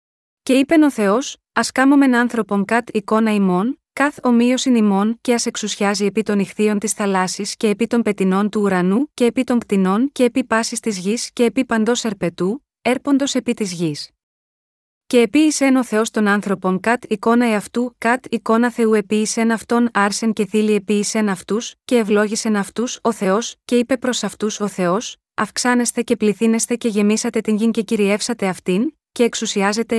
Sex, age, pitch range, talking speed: female, 20-39, 205-240 Hz, 180 wpm